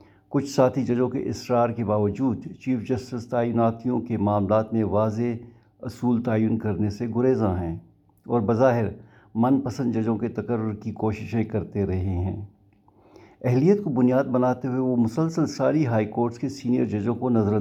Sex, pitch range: male, 105-125 Hz